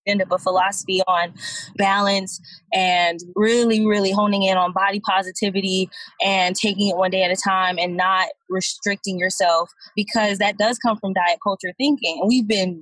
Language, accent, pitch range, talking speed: English, American, 190-230 Hz, 170 wpm